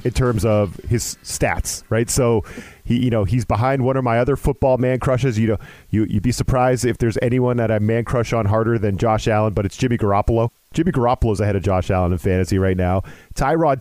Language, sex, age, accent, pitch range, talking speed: English, male, 40-59, American, 115-145 Hz, 225 wpm